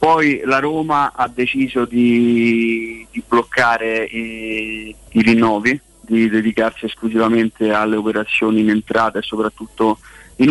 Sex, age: male, 20-39